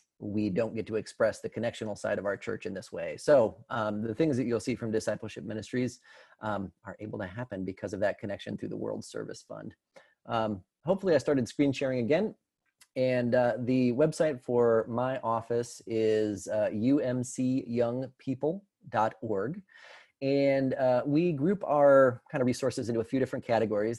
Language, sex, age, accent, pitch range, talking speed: English, male, 30-49, American, 110-125 Hz, 170 wpm